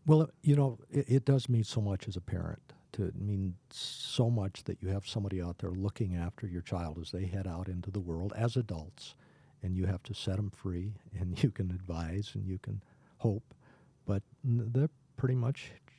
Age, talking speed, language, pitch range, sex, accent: 50-69, 205 wpm, English, 90-120 Hz, male, American